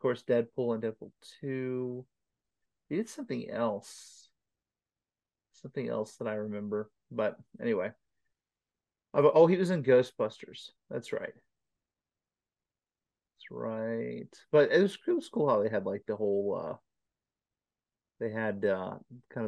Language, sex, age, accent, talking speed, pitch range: English, male, 30-49, American, 125 wpm, 115-165 Hz